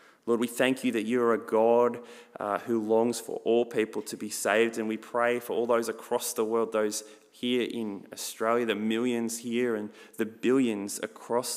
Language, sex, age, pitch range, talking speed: English, male, 20-39, 110-125 Hz, 195 wpm